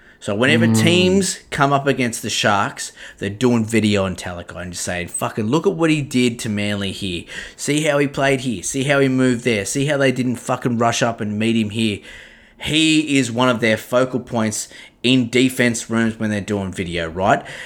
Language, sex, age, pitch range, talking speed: English, male, 20-39, 105-130 Hz, 205 wpm